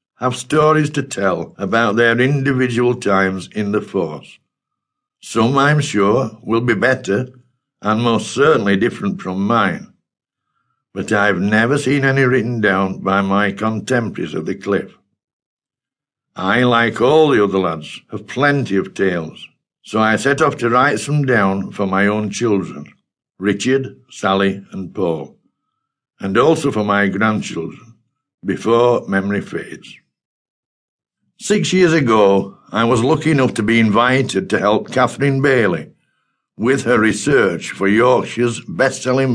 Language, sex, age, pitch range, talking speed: English, male, 60-79, 100-130 Hz, 135 wpm